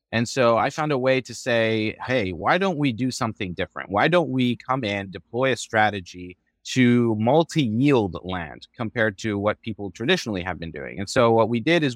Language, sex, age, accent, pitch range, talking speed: English, male, 30-49, American, 100-125 Hz, 200 wpm